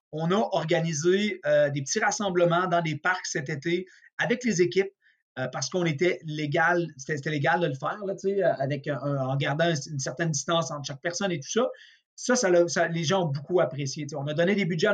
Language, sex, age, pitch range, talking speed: French, male, 30-49, 155-190 Hz, 215 wpm